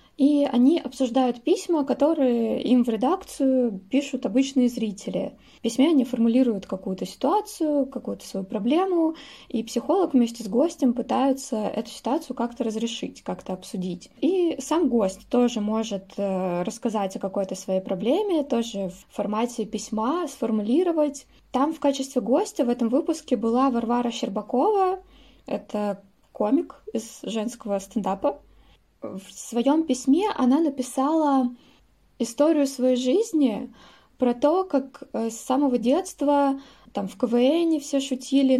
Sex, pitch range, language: female, 225-280 Hz, Russian